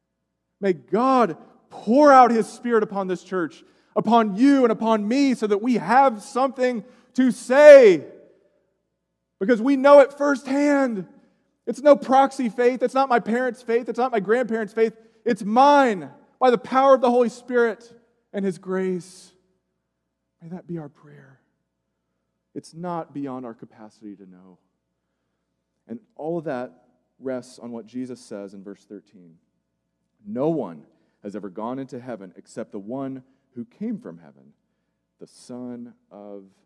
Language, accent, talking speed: English, American, 150 wpm